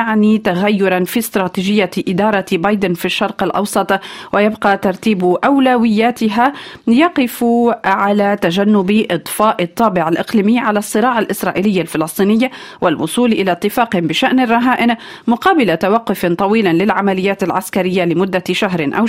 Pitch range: 190-235 Hz